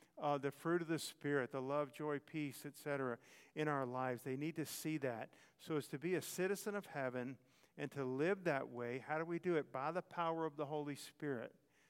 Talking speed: 220 wpm